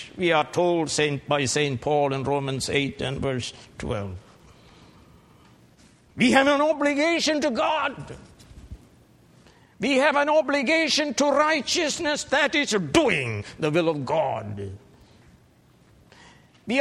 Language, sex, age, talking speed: English, male, 60-79, 120 wpm